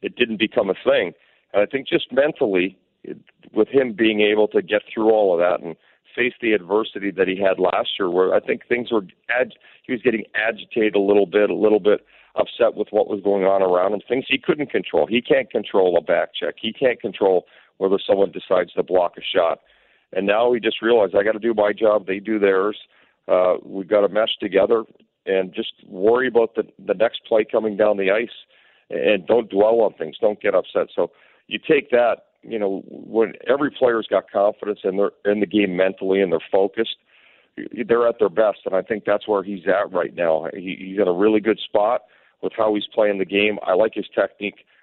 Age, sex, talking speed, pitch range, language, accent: 40-59, male, 220 wpm, 100-115 Hz, English, American